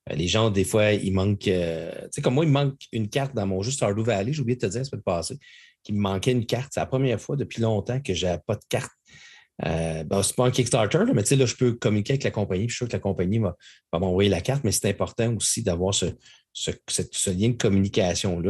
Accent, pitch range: Canadian, 100-130 Hz